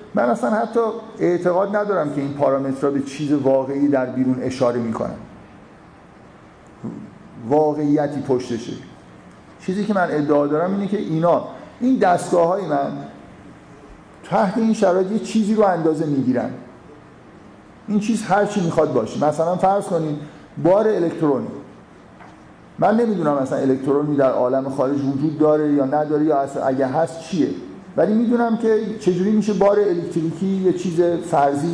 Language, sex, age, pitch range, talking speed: Persian, male, 50-69, 145-195 Hz, 135 wpm